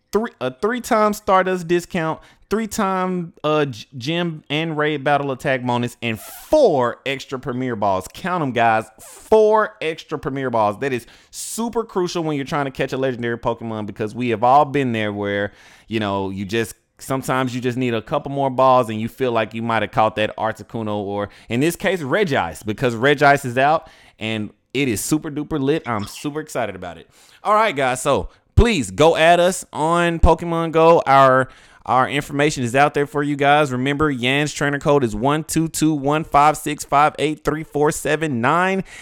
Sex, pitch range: male, 125-185 Hz